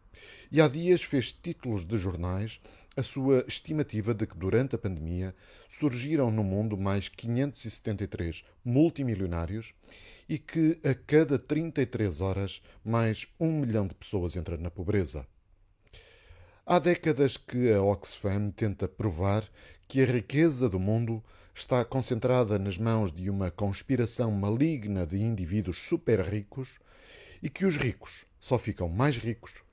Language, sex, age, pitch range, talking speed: Portuguese, male, 50-69, 95-135 Hz, 135 wpm